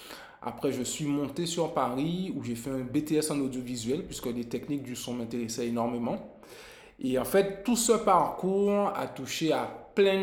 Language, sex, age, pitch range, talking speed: French, male, 20-39, 120-155 Hz, 175 wpm